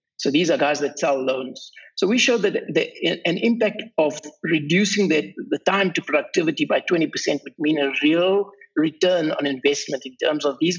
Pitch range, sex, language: 150-205 Hz, male, English